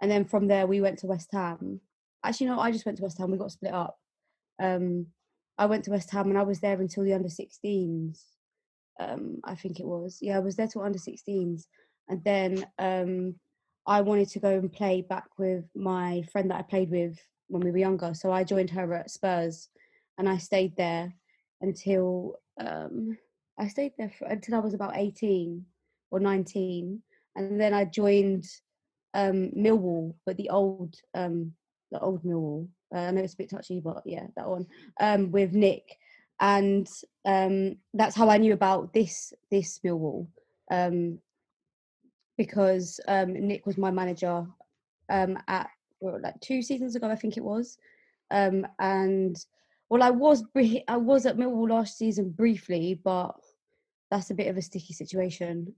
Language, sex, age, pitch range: English, female, 20-39, 180-205 Hz